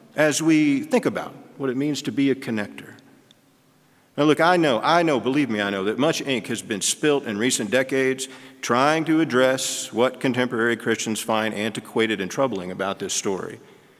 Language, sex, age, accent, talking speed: English, male, 40-59, American, 185 wpm